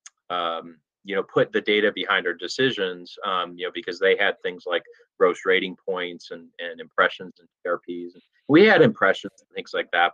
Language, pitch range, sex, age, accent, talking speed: English, 100-150 Hz, male, 30-49, American, 190 wpm